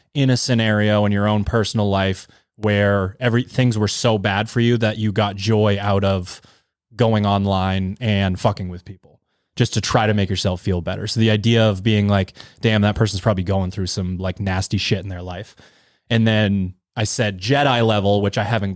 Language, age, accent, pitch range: English, 20-39, American, 100-115 Hz